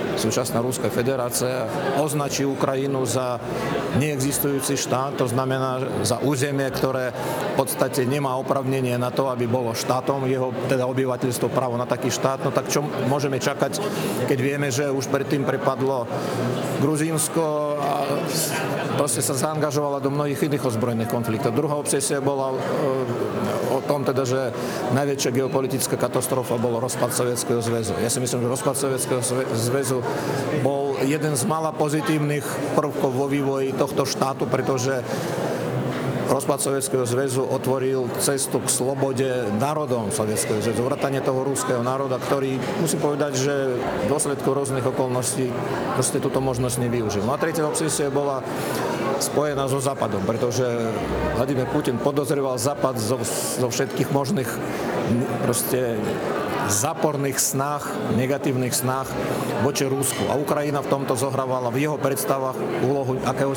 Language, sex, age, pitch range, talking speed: Slovak, male, 40-59, 125-140 Hz, 130 wpm